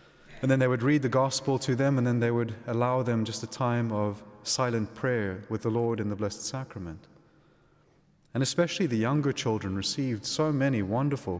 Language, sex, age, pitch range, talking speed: English, male, 30-49, 110-125 Hz, 195 wpm